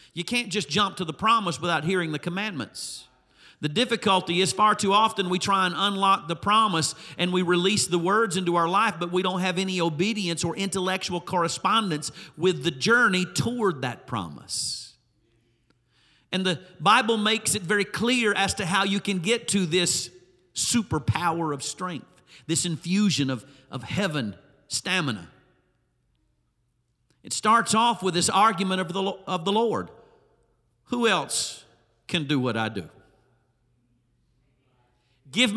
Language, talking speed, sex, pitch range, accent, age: English, 150 wpm, male, 135-200 Hz, American, 50-69